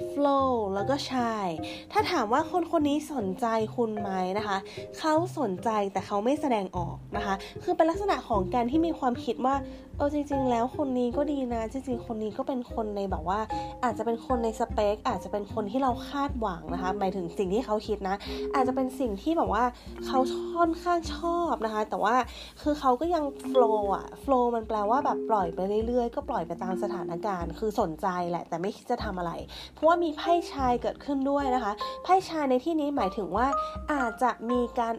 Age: 20-39